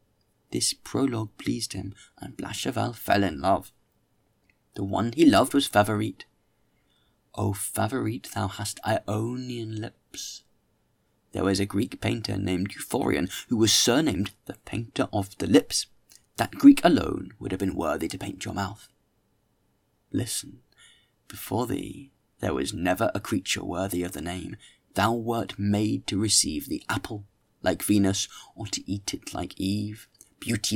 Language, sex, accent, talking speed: English, male, British, 145 wpm